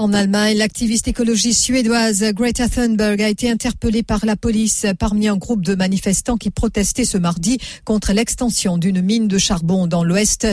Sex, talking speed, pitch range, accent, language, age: female, 170 wpm, 185-225 Hz, French, English, 50-69